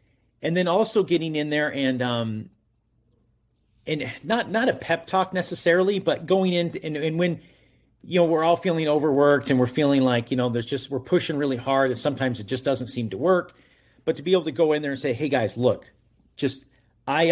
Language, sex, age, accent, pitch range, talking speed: English, male, 40-59, American, 125-185 Hz, 215 wpm